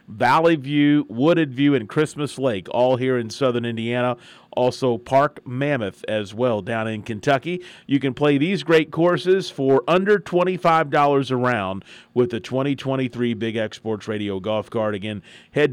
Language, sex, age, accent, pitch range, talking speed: English, male, 40-59, American, 110-140 Hz, 155 wpm